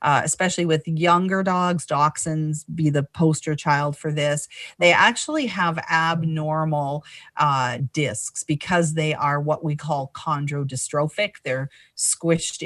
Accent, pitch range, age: American, 140-170 Hz, 40-59